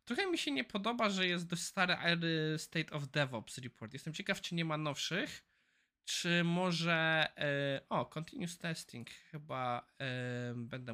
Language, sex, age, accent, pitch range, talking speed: Polish, male, 20-39, native, 135-175 Hz, 145 wpm